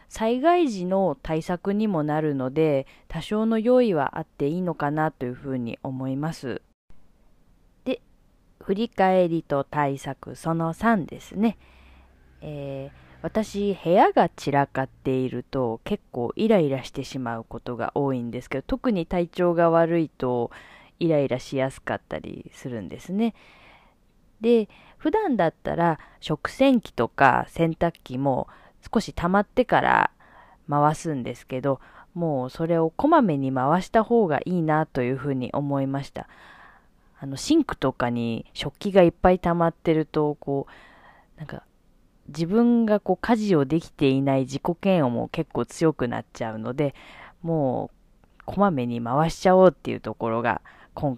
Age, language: 20-39, Japanese